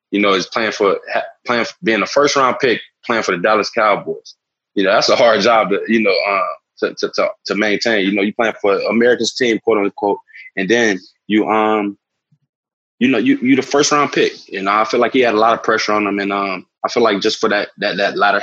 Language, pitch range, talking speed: English, 105-120 Hz, 255 wpm